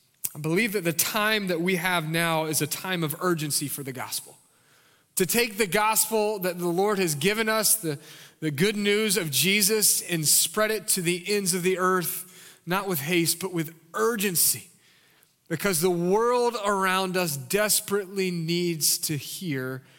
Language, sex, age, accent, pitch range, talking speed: English, male, 30-49, American, 165-210 Hz, 170 wpm